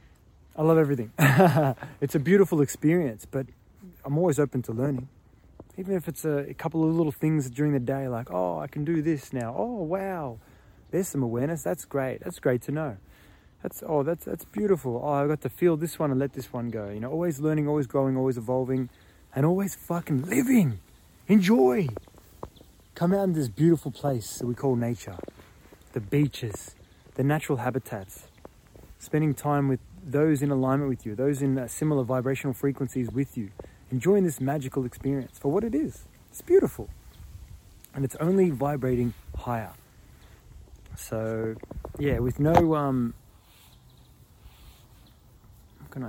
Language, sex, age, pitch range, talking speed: English, male, 20-39, 120-160 Hz, 165 wpm